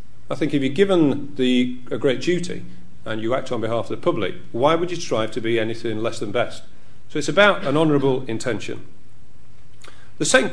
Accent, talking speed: British, 200 wpm